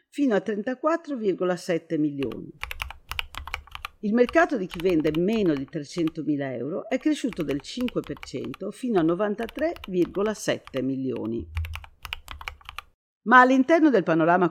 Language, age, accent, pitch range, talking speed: Italian, 50-69, native, 160-230 Hz, 105 wpm